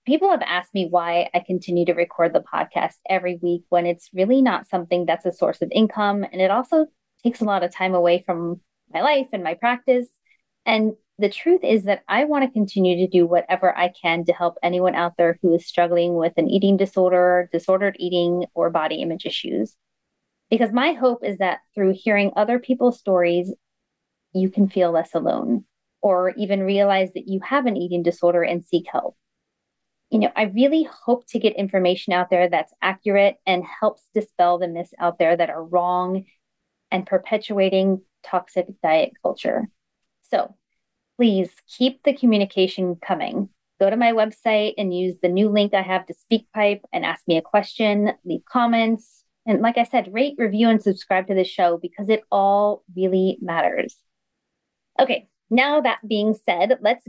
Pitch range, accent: 180-220 Hz, American